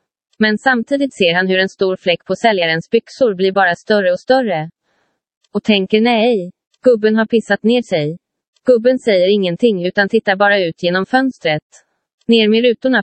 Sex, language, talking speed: female, Swedish, 165 wpm